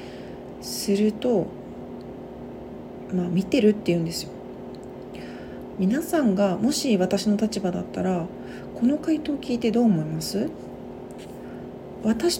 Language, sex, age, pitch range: Japanese, female, 40-59, 185-245 Hz